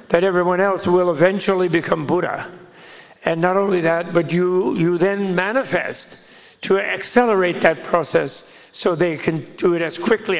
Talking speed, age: 155 wpm, 60-79